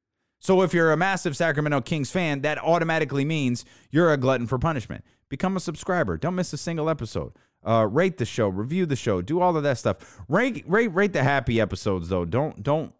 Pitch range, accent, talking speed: 110-165 Hz, American, 210 wpm